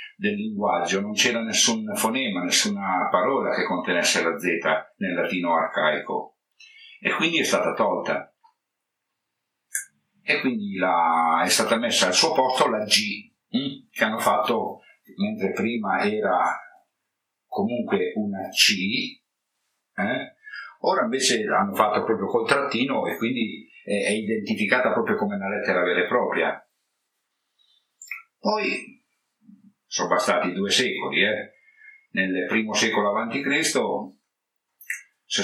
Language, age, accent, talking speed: Italian, 50-69, native, 115 wpm